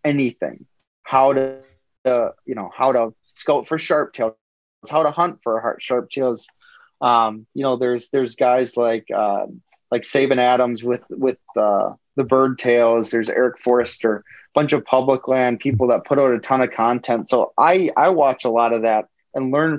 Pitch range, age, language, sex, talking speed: 115-145 Hz, 20-39, English, male, 190 wpm